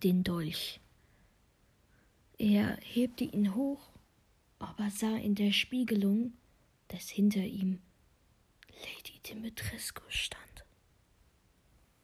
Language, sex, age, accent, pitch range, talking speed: German, female, 20-39, German, 180-220 Hz, 85 wpm